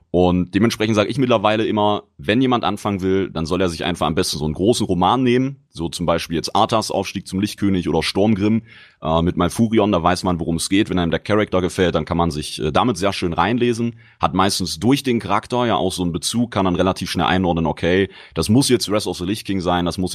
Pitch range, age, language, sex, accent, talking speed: 90-110 Hz, 30-49, German, male, German, 245 wpm